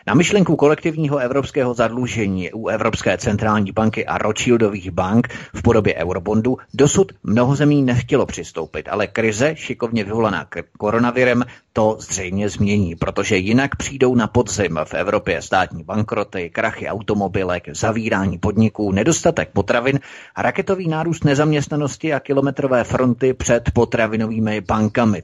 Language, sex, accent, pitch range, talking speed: Czech, male, native, 105-125 Hz, 130 wpm